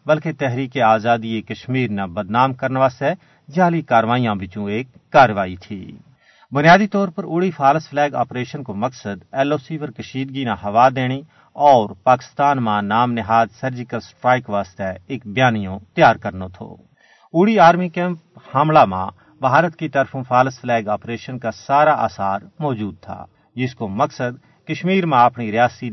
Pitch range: 110-145 Hz